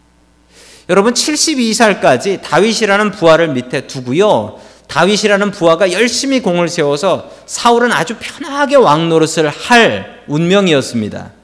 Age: 40-59